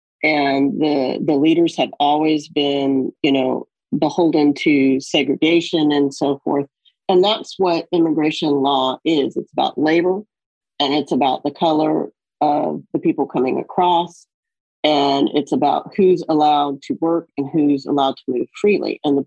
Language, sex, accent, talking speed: English, female, American, 155 wpm